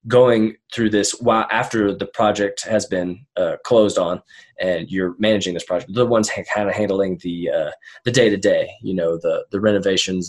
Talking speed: 195 wpm